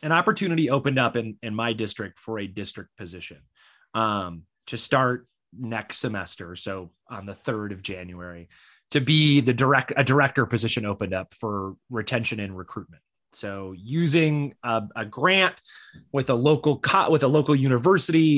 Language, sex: English, male